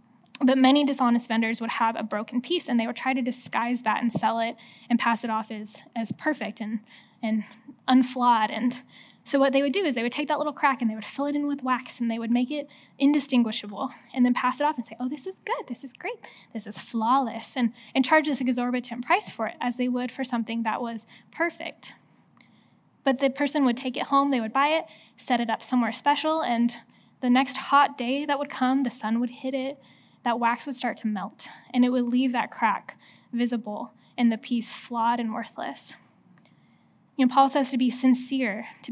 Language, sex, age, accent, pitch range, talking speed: English, female, 10-29, American, 230-270 Hz, 225 wpm